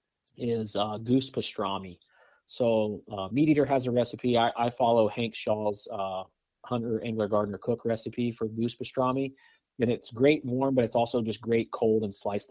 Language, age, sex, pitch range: English, 30-49, male, 105-125 Hz